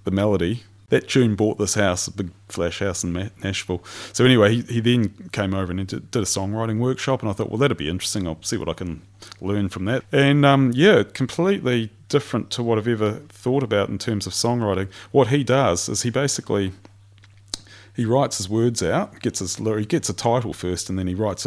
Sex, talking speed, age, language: male, 220 wpm, 30-49, English